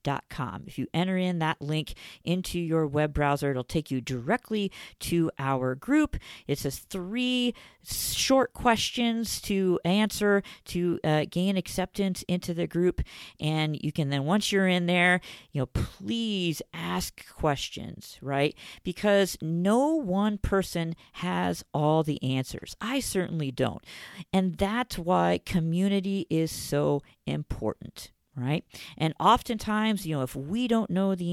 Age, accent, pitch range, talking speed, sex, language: 40-59, American, 145-195 Hz, 145 wpm, female, English